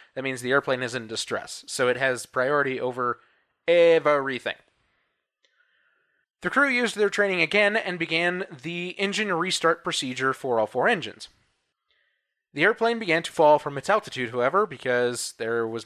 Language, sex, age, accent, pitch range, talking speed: English, male, 20-39, American, 130-180 Hz, 155 wpm